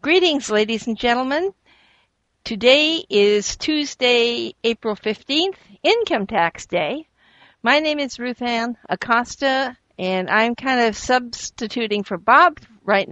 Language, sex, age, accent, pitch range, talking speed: English, female, 60-79, American, 200-255 Hz, 120 wpm